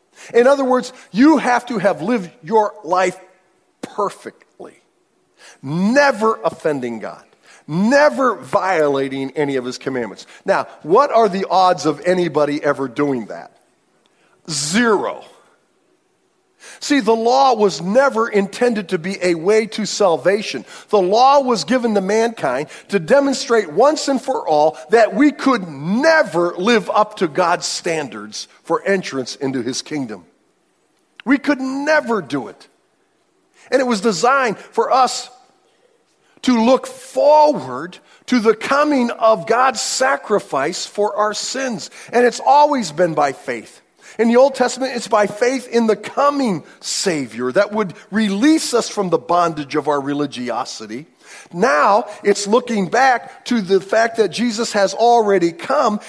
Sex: male